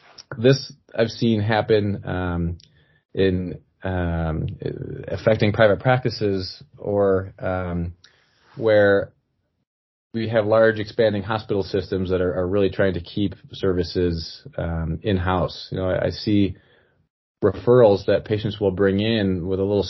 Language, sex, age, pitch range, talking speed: English, male, 30-49, 95-110 Hz, 130 wpm